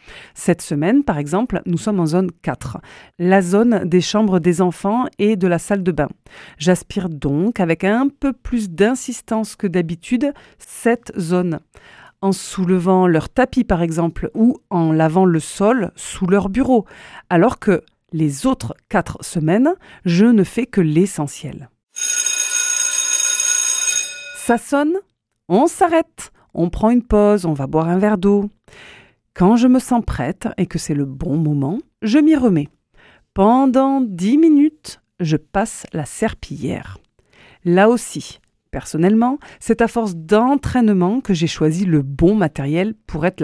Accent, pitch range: French, 170-240 Hz